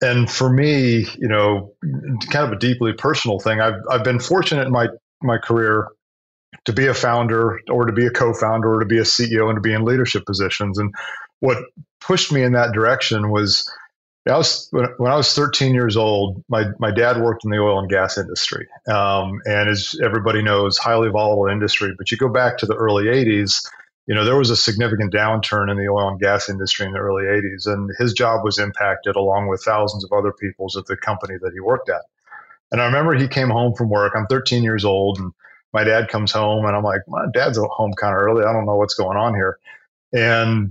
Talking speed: 220 wpm